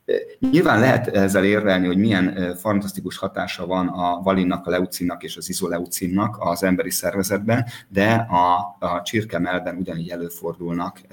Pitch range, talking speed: 90-105 Hz, 140 wpm